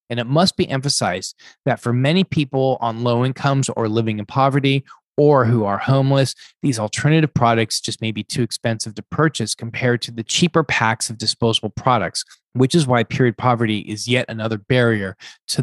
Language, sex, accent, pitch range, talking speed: English, male, American, 110-130 Hz, 185 wpm